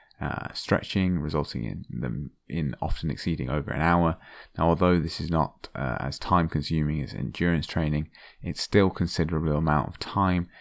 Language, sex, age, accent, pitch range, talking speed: English, male, 20-39, British, 75-90 Hz, 165 wpm